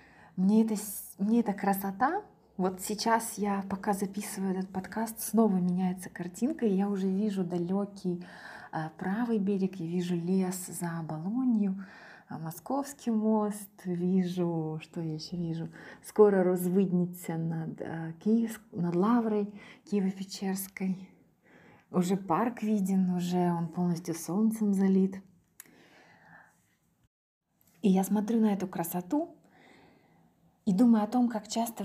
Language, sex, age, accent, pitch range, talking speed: Ukrainian, female, 20-39, native, 180-215 Hz, 115 wpm